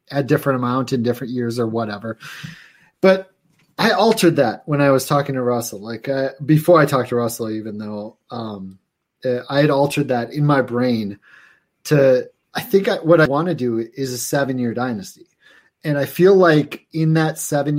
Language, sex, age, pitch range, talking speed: English, male, 30-49, 125-160 Hz, 180 wpm